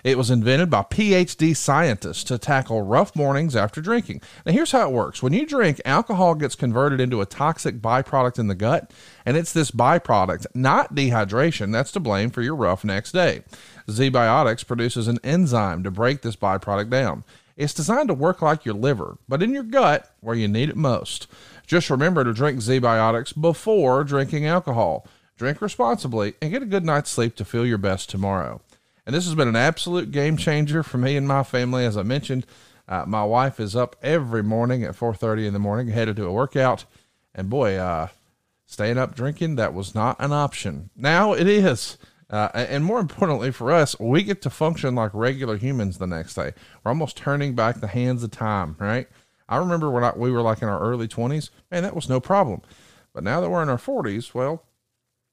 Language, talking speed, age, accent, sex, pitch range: English, 200 wpm, 40-59, American, male, 115-155 Hz